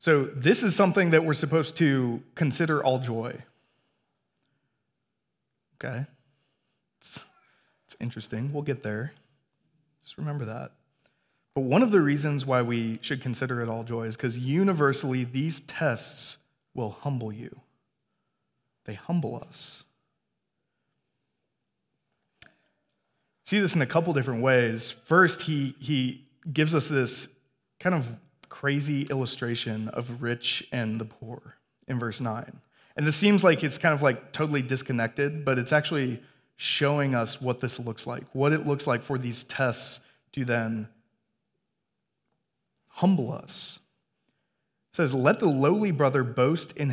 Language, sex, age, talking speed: English, male, 20-39, 135 wpm